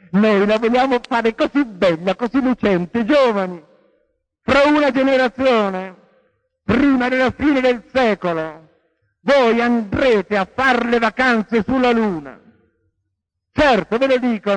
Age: 60-79